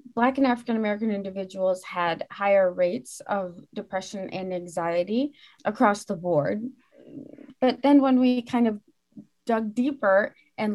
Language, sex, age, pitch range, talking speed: English, female, 30-49, 185-240 Hz, 130 wpm